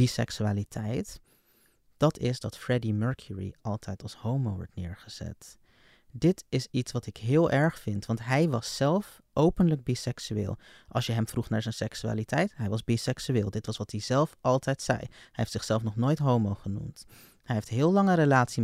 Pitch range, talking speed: 110-145 Hz, 175 wpm